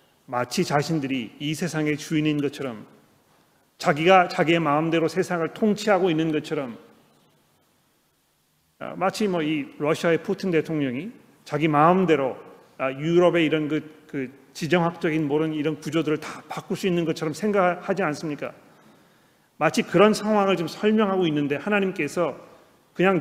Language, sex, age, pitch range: Korean, male, 40-59, 145-175 Hz